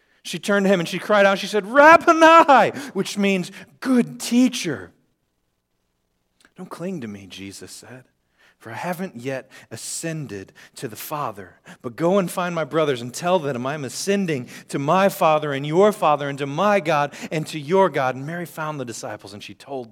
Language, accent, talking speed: English, American, 185 wpm